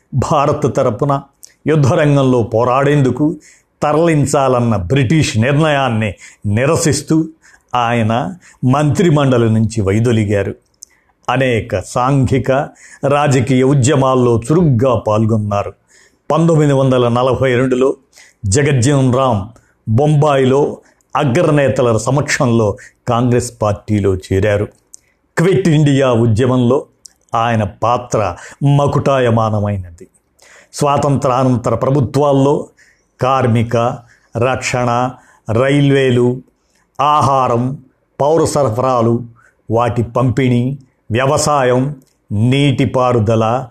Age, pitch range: 50-69, 115-145 Hz